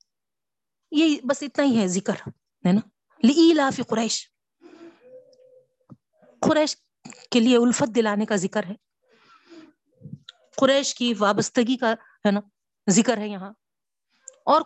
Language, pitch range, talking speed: Urdu, 205-290 Hz, 110 wpm